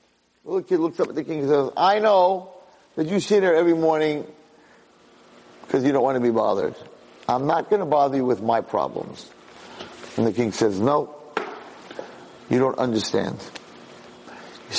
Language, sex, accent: English, male, American